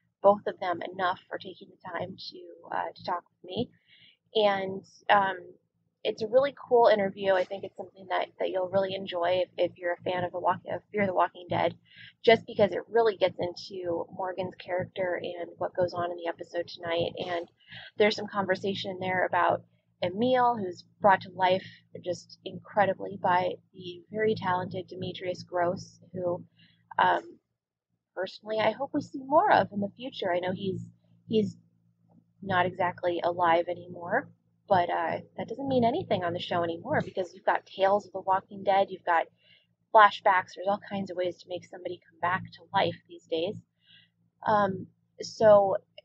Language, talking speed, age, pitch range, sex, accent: English, 175 wpm, 20-39, 175-205 Hz, female, American